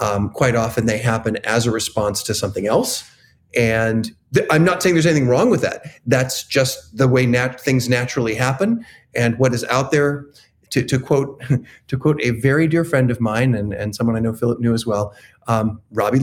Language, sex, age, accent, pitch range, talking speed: English, male, 40-59, American, 110-140 Hz, 205 wpm